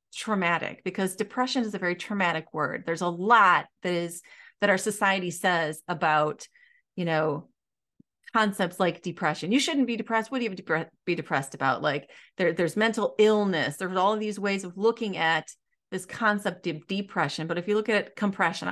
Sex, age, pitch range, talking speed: female, 30-49, 170-220 Hz, 185 wpm